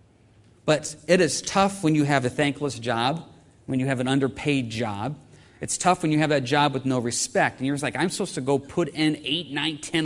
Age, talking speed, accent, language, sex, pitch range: 40-59, 235 wpm, American, English, male, 130-180 Hz